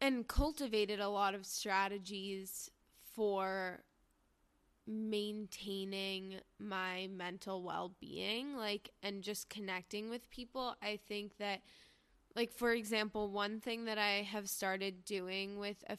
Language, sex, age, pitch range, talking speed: English, female, 20-39, 195-225 Hz, 120 wpm